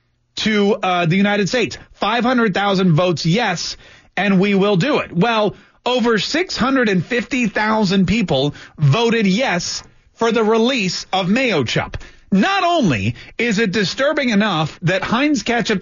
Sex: male